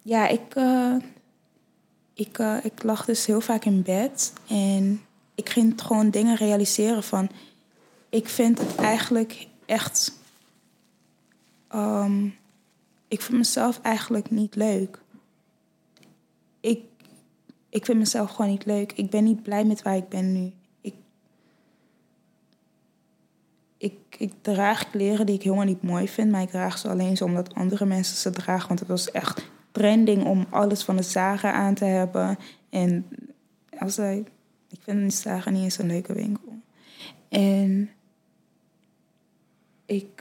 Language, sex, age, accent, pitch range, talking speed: Dutch, female, 20-39, Dutch, 195-230 Hz, 145 wpm